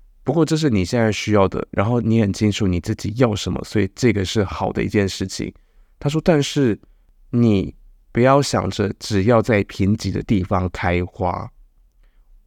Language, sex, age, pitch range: Chinese, male, 20-39, 100-130 Hz